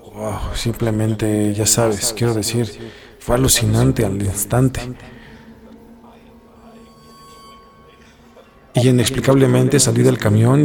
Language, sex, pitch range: Spanish, male, 105-120 Hz